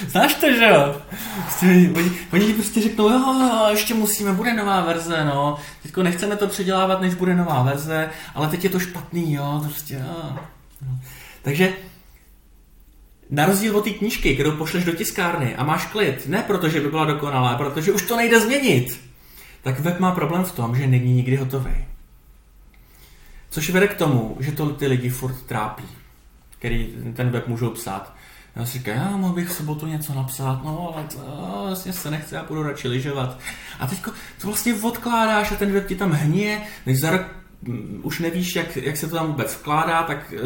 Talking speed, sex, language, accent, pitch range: 180 wpm, male, Czech, native, 130-180 Hz